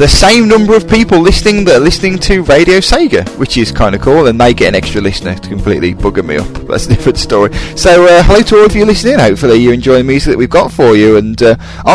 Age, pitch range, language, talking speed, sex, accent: 20-39, 100-145 Hz, English, 260 wpm, male, British